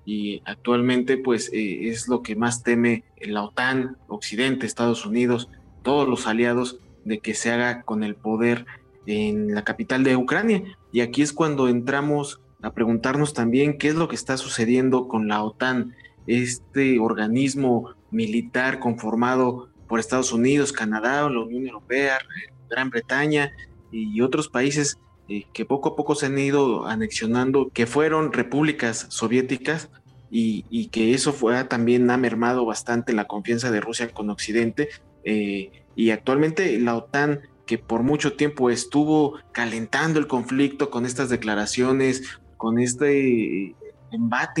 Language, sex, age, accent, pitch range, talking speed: Spanish, male, 30-49, Mexican, 115-140 Hz, 145 wpm